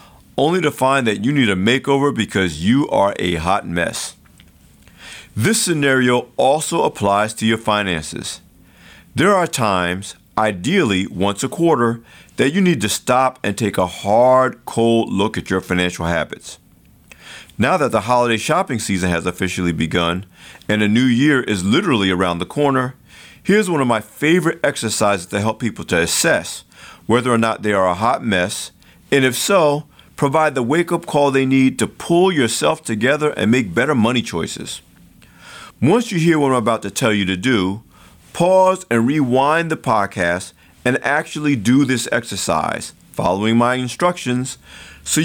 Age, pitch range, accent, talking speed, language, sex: 50-69, 95-145 Hz, American, 165 wpm, English, male